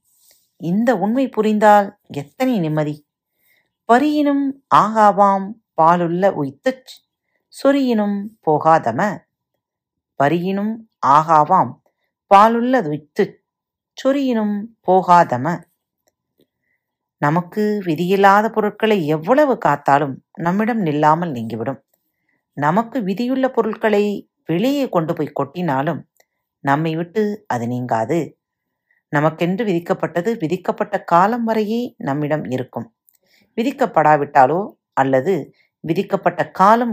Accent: native